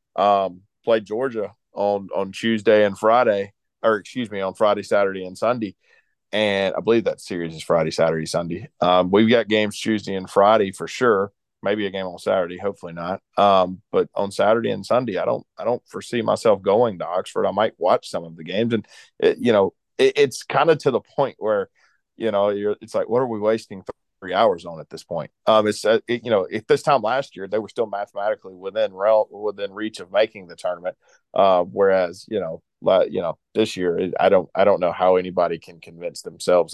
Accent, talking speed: American, 215 wpm